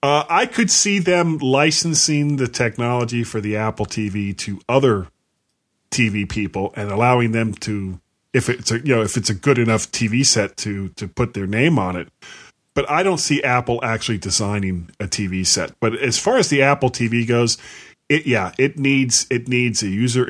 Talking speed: 190 wpm